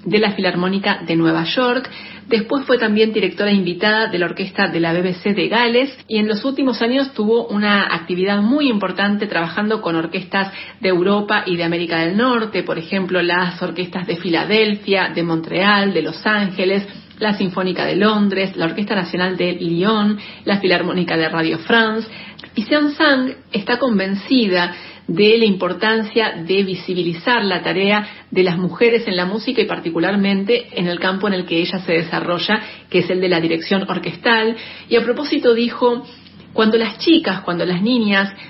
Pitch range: 180-225 Hz